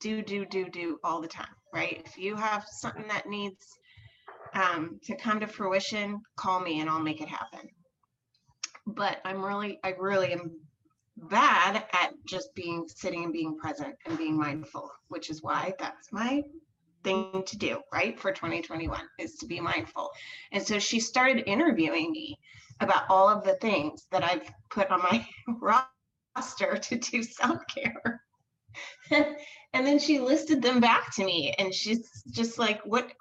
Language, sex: English, female